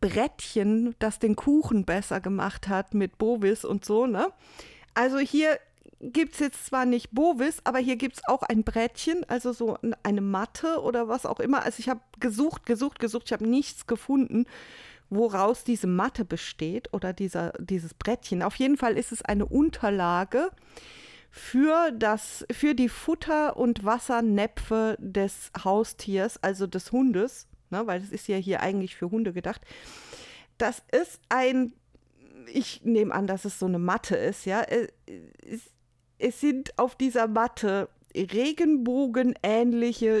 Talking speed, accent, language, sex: 150 wpm, German, German, female